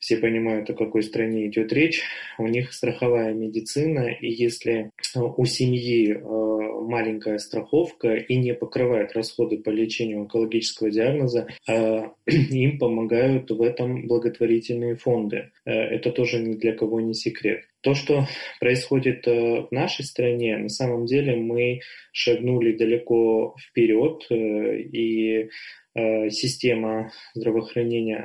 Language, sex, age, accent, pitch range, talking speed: Russian, male, 20-39, native, 110-125 Hz, 115 wpm